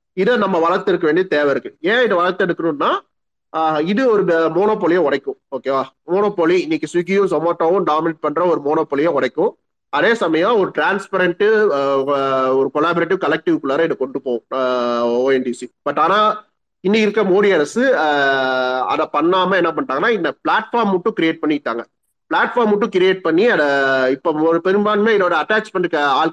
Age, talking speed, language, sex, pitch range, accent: 30-49, 135 wpm, Tamil, male, 140-195 Hz, native